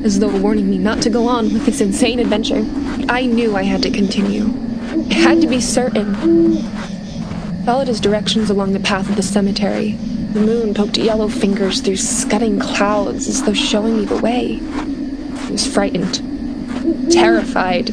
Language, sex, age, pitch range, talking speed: English, female, 20-39, 205-255 Hz, 175 wpm